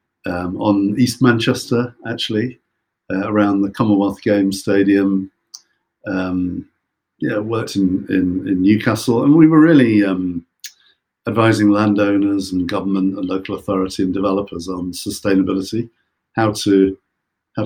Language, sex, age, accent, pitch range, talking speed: English, male, 50-69, British, 95-115 Hz, 120 wpm